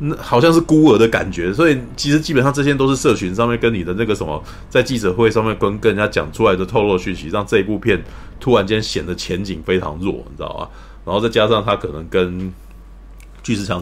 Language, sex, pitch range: Chinese, male, 90-120 Hz